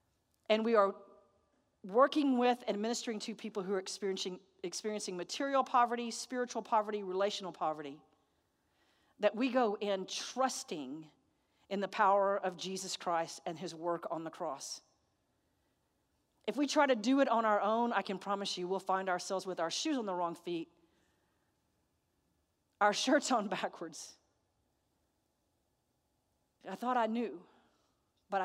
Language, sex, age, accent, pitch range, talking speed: English, female, 40-59, American, 180-215 Hz, 145 wpm